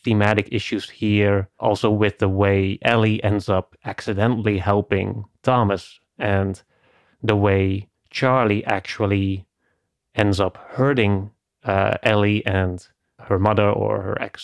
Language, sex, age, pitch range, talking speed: English, male, 30-49, 100-110 Hz, 120 wpm